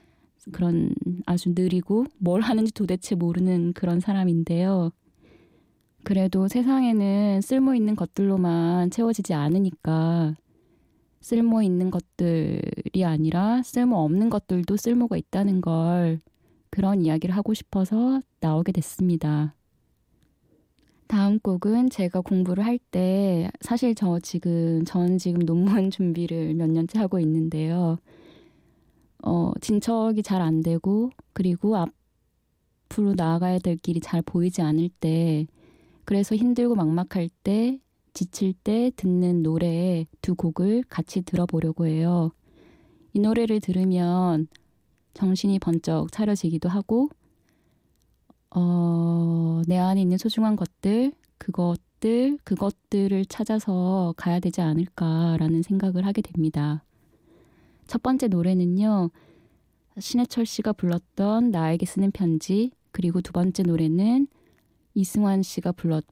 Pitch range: 170-205 Hz